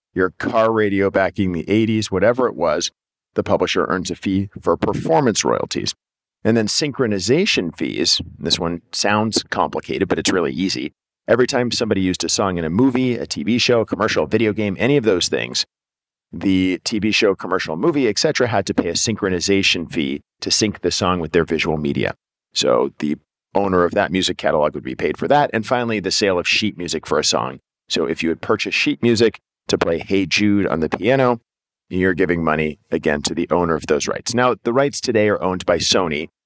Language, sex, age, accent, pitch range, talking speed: English, male, 50-69, American, 90-110 Hz, 200 wpm